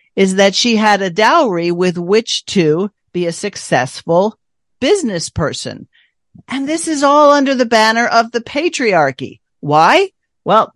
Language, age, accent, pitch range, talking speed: English, 50-69, American, 170-225 Hz, 145 wpm